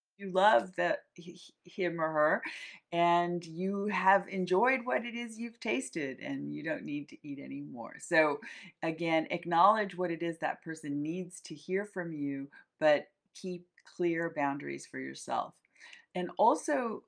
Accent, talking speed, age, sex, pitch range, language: American, 150 wpm, 40-59, female, 155-195 Hz, English